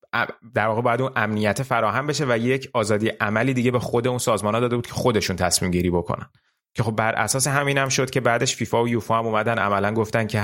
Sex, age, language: male, 30-49, Persian